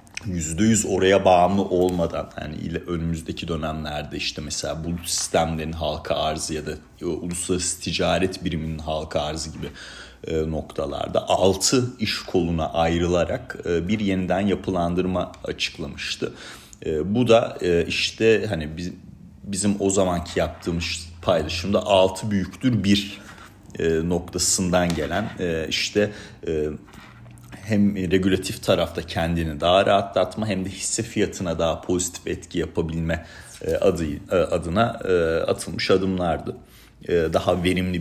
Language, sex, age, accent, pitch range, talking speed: Turkish, male, 40-59, native, 85-100 Hz, 105 wpm